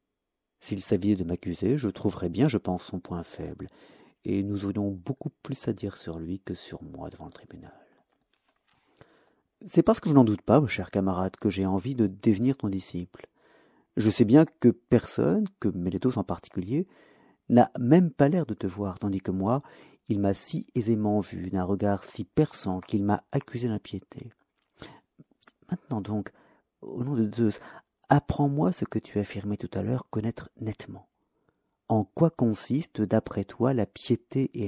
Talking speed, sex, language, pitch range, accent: 175 wpm, male, French, 100-130 Hz, French